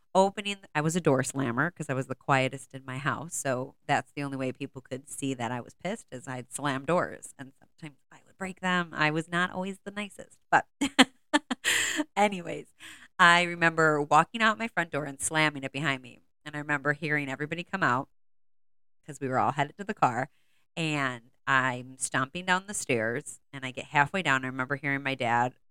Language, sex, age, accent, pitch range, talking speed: English, female, 30-49, American, 135-175 Hz, 205 wpm